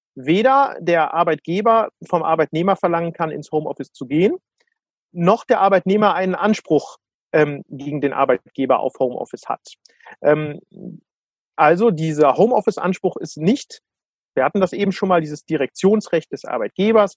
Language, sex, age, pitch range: German, male, 40-59, 160-205 Hz